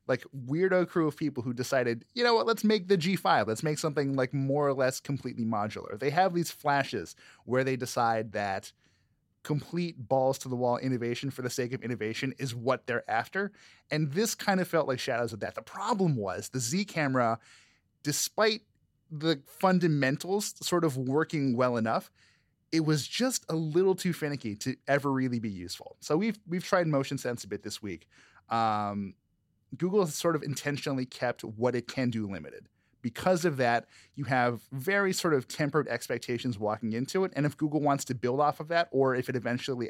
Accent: American